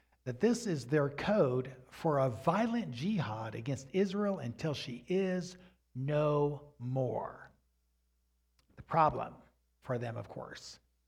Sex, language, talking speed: male, English, 120 wpm